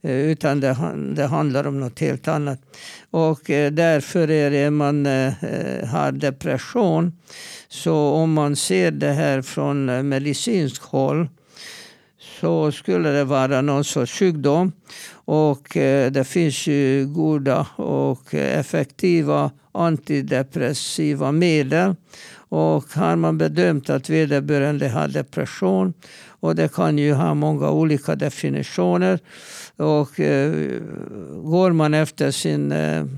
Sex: male